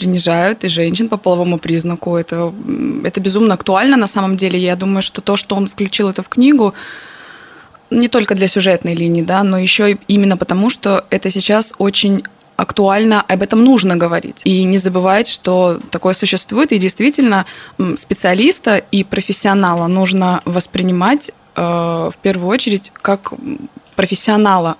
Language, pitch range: Russian, 180-205 Hz